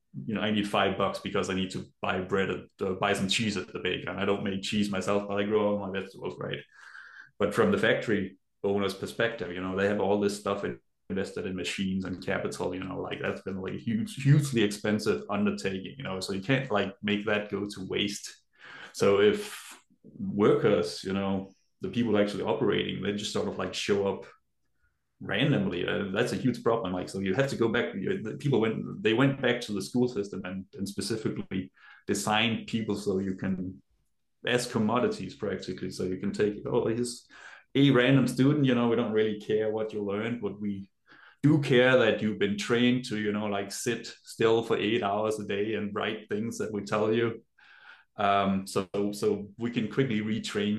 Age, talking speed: 20-39, 210 wpm